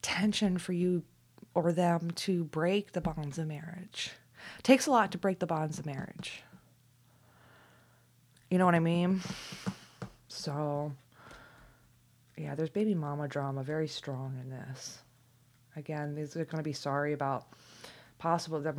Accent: American